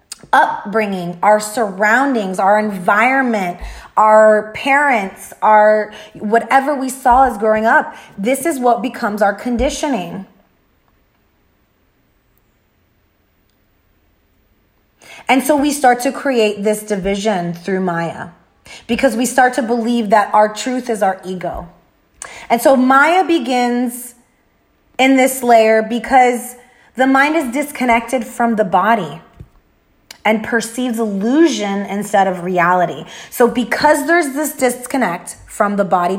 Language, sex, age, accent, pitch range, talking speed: English, female, 20-39, American, 195-265 Hz, 115 wpm